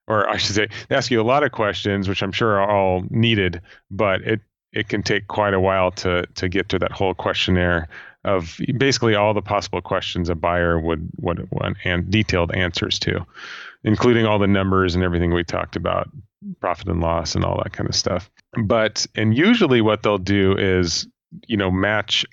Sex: male